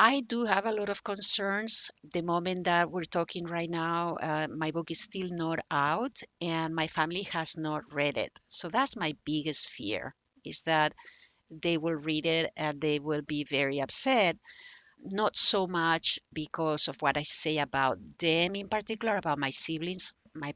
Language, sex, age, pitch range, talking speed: English, female, 50-69, 155-195 Hz, 180 wpm